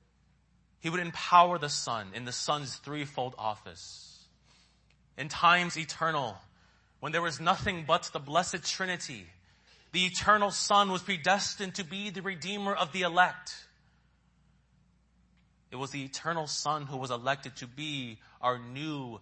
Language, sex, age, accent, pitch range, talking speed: English, male, 30-49, American, 125-190 Hz, 140 wpm